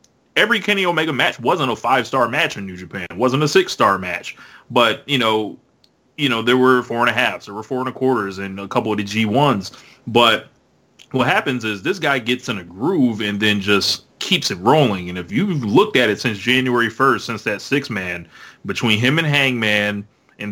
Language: English